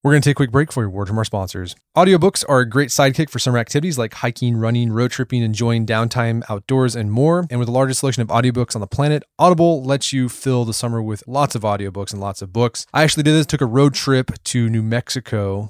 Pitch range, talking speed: 110-135 Hz, 250 wpm